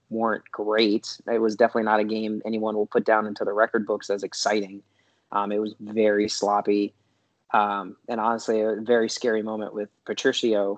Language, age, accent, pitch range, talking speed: English, 20-39, American, 105-115 Hz, 180 wpm